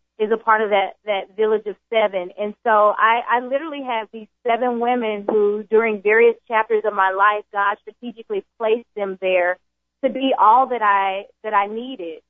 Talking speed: 185 wpm